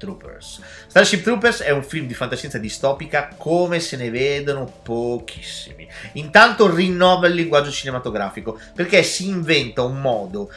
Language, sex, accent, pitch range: Italian, male, native, 130-215 Hz